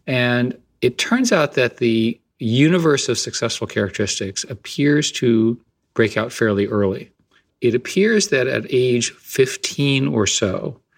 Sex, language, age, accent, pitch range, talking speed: male, English, 50-69, American, 100-120 Hz, 130 wpm